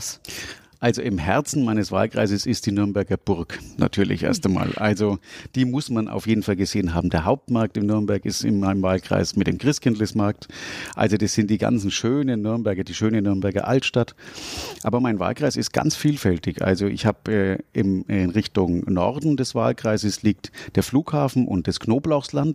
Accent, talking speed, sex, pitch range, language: German, 170 wpm, male, 95-120 Hz, German